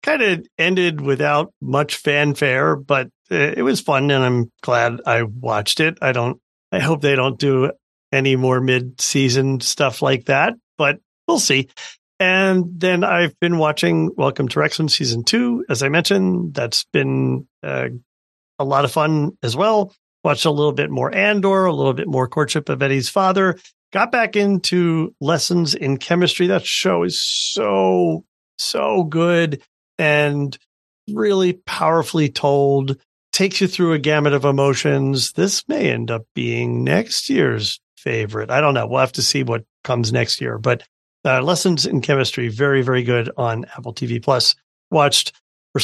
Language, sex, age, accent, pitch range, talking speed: English, male, 50-69, American, 125-170 Hz, 165 wpm